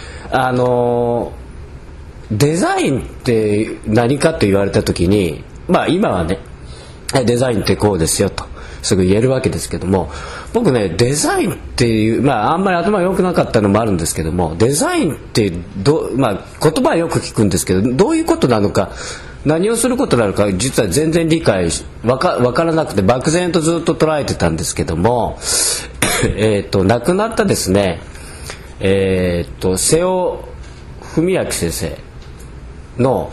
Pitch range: 85-140 Hz